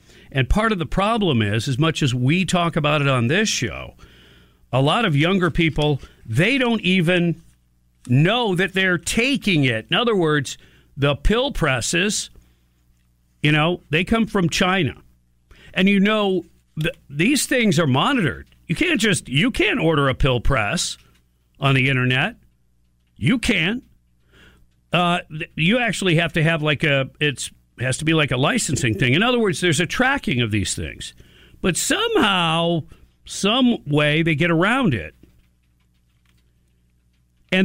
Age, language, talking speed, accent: 50-69, English, 155 wpm, American